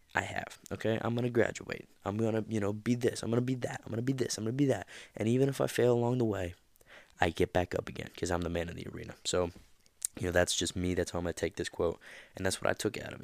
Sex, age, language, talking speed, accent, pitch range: male, 20-39, English, 315 wpm, American, 90-110 Hz